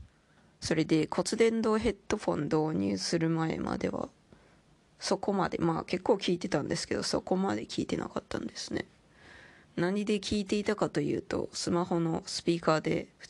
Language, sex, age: Japanese, female, 20-39